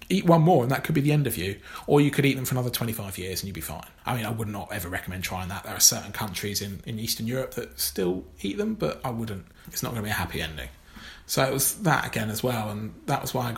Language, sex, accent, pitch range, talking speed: English, male, British, 100-130 Hz, 300 wpm